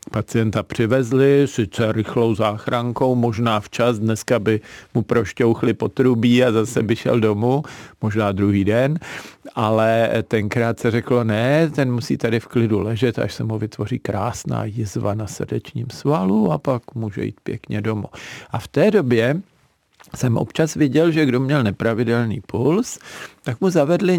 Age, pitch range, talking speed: 50-69, 110-135 Hz, 150 wpm